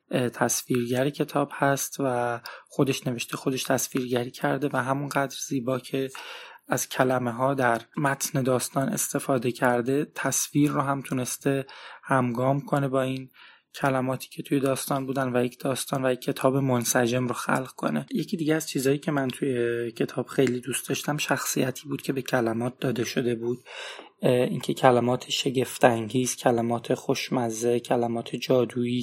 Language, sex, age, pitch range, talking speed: Persian, male, 20-39, 125-140 Hz, 145 wpm